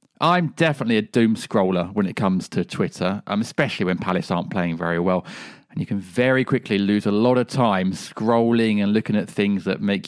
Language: English